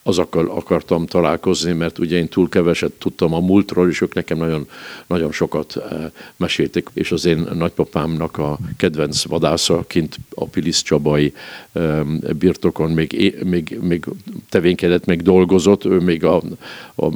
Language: Hungarian